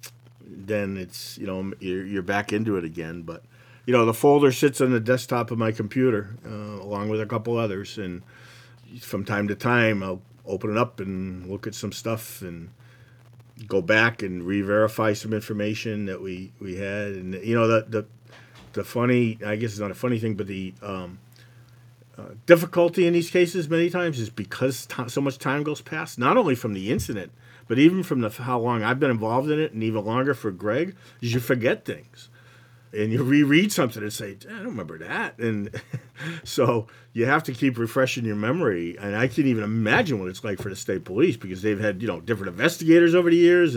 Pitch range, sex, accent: 105-125 Hz, male, American